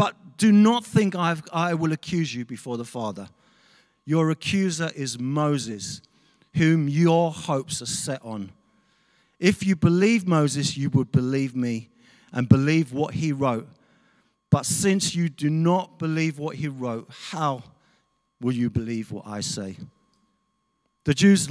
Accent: British